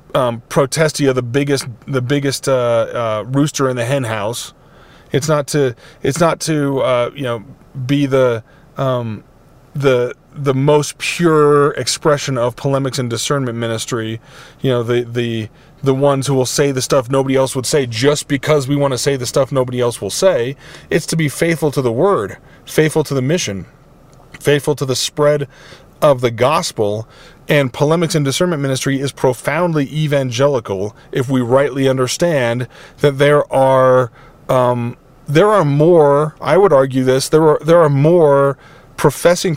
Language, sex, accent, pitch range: English, male, American, 130-150 Hz